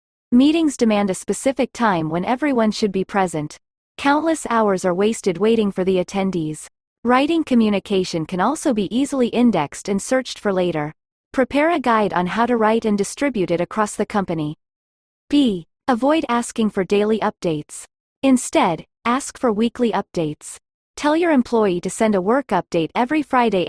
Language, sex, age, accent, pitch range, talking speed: English, female, 30-49, American, 180-250 Hz, 160 wpm